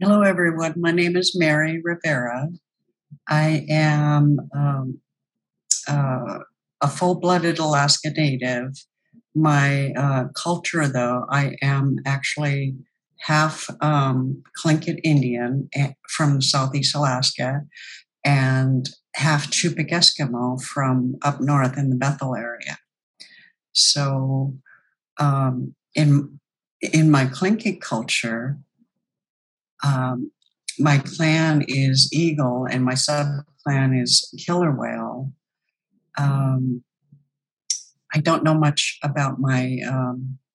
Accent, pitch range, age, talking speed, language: American, 130-155 Hz, 60-79, 100 wpm, English